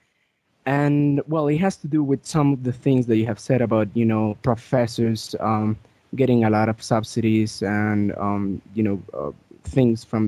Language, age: English, 20-39